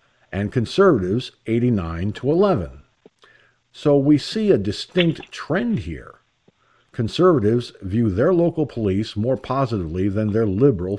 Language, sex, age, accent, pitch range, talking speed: English, male, 50-69, American, 100-140 Hz, 120 wpm